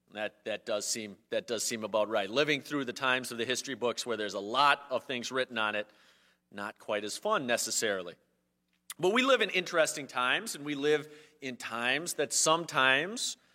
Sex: male